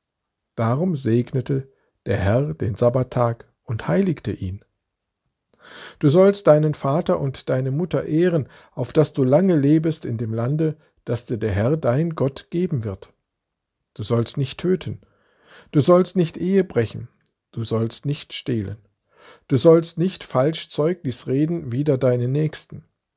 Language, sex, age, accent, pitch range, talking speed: German, male, 50-69, German, 120-155 Hz, 140 wpm